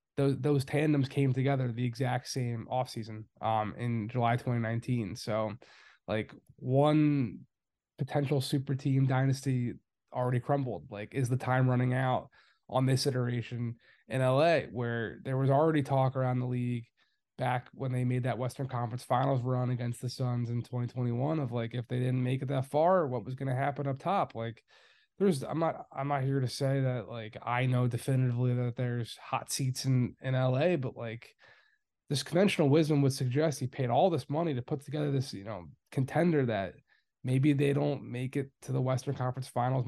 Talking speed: 185 wpm